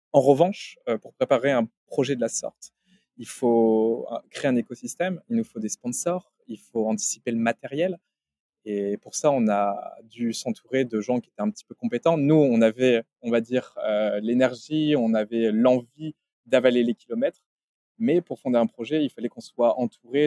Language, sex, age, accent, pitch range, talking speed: French, male, 20-39, French, 110-145 Hz, 185 wpm